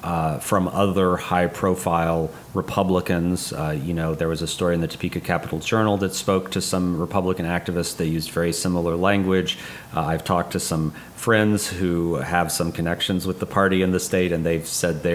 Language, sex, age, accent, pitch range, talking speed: English, male, 30-49, American, 90-115 Hz, 190 wpm